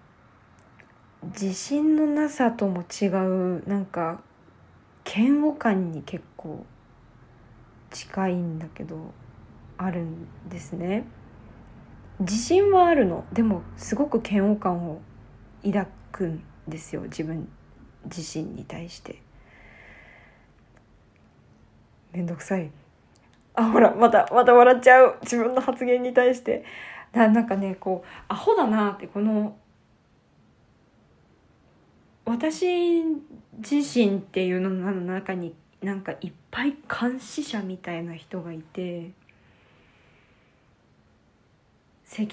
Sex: female